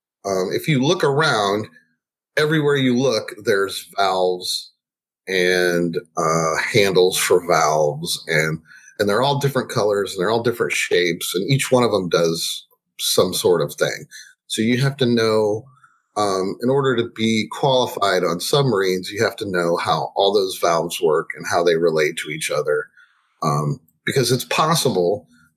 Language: English